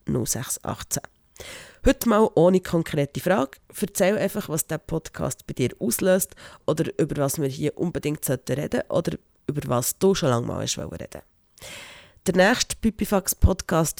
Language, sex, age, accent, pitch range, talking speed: German, female, 30-49, Austrian, 150-190 Hz, 140 wpm